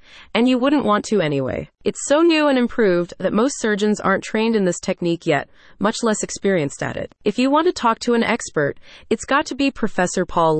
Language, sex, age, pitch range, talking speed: English, female, 30-49, 170-235 Hz, 220 wpm